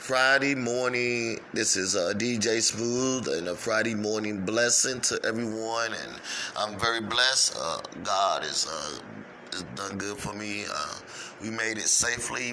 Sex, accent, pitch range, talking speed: male, American, 100-115 Hz, 160 wpm